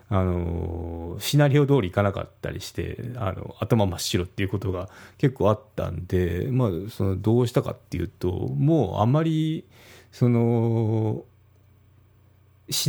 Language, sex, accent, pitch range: Japanese, male, native, 95-130 Hz